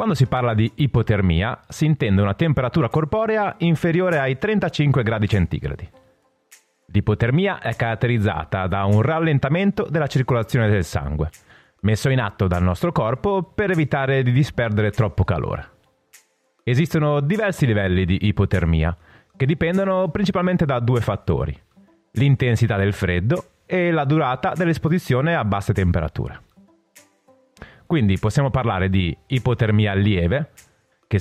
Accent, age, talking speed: native, 30-49, 125 wpm